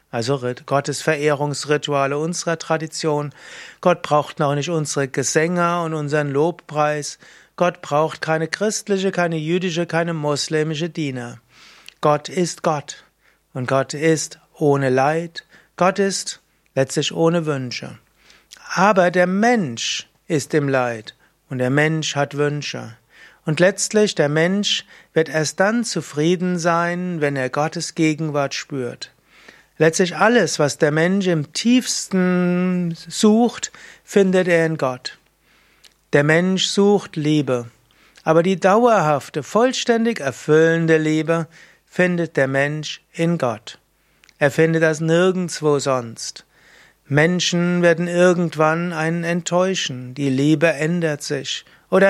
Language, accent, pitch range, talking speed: German, German, 145-180 Hz, 120 wpm